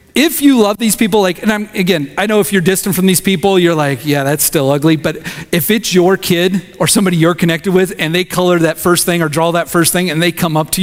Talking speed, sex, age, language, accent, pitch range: 270 wpm, male, 40-59, English, American, 150-200 Hz